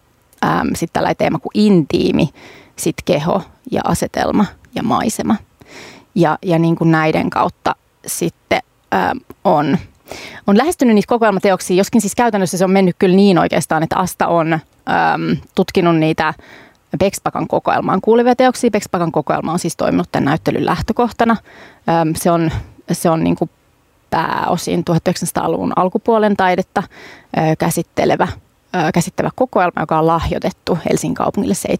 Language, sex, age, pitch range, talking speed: Finnish, female, 30-49, 165-200 Hz, 135 wpm